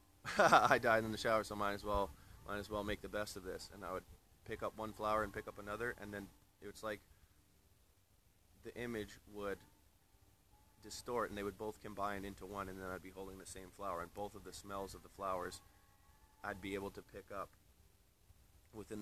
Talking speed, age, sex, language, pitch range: 210 wpm, 20-39, male, English, 95-105 Hz